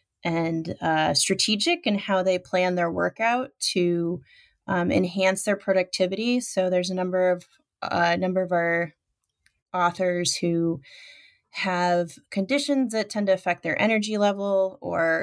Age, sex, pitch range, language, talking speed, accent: 20-39, female, 170-200 Hz, English, 140 wpm, American